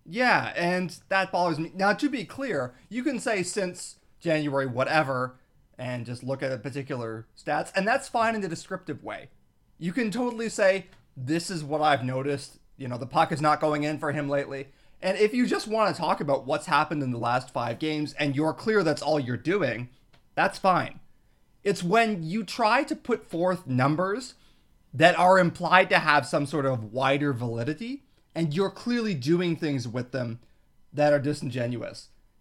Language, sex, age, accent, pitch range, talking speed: English, male, 30-49, American, 135-190 Hz, 185 wpm